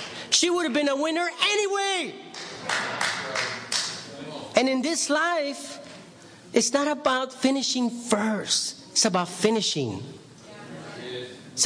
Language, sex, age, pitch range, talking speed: English, male, 40-59, 175-240 Hz, 105 wpm